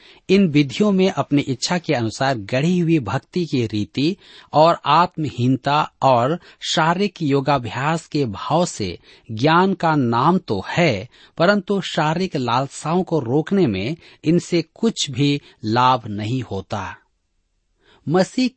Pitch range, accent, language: 115-175 Hz, native, Hindi